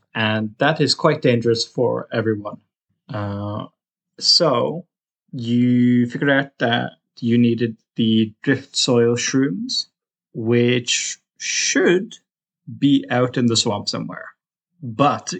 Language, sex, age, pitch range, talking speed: English, male, 20-39, 110-140 Hz, 110 wpm